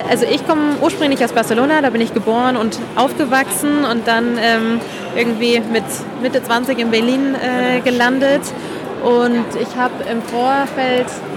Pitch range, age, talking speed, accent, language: 225-260 Hz, 20-39, 150 wpm, German, German